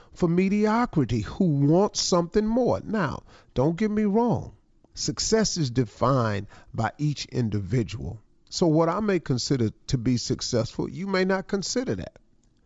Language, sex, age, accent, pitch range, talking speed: English, male, 40-59, American, 130-190 Hz, 140 wpm